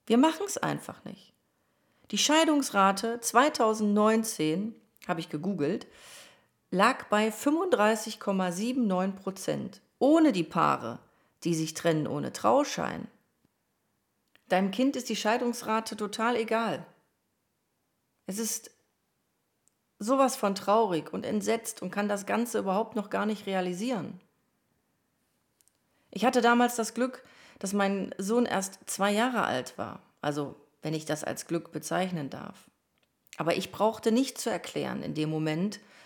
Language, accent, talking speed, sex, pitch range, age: German, German, 125 wpm, female, 170-230 Hz, 40-59